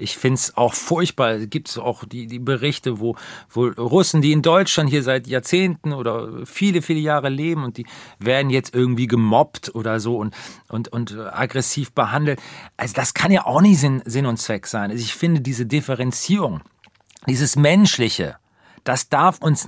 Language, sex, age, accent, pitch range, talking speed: German, male, 40-59, German, 115-150 Hz, 175 wpm